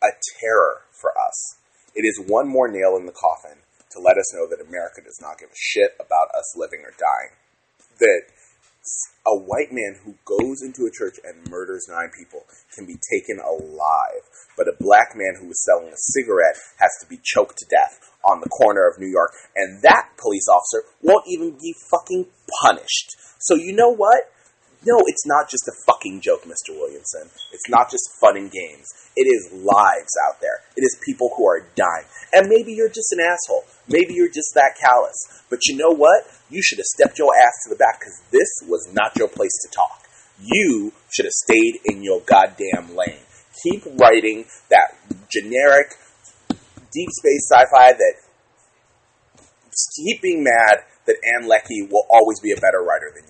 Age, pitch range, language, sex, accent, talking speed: 30-49, 295-460 Hz, English, male, American, 185 wpm